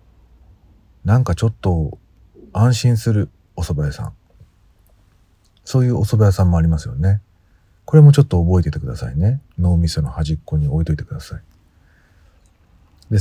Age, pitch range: 50-69, 80-100 Hz